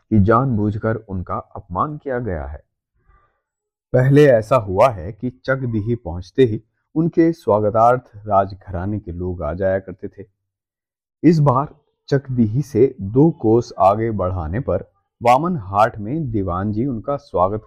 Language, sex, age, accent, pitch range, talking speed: Hindi, male, 30-49, native, 90-130 Hz, 130 wpm